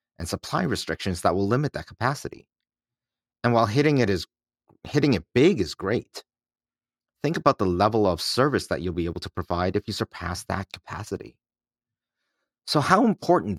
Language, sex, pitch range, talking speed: English, male, 95-120 Hz, 170 wpm